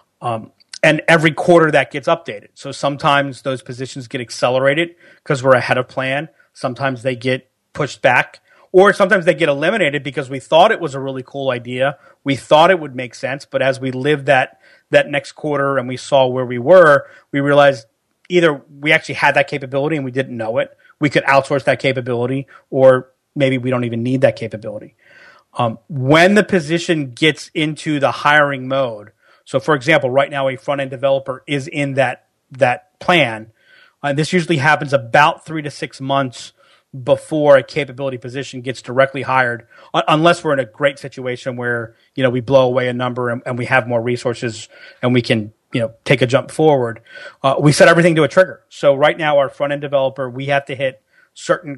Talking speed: 195 wpm